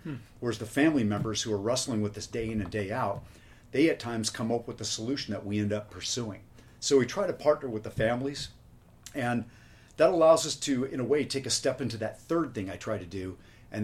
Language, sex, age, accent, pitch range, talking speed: English, male, 40-59, American, 105-130 Hz, 240 wpm